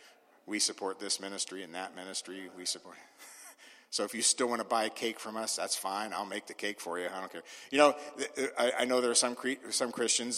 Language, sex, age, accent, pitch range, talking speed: English, male, 50-69, American, 110-170 Hz, 225 wpm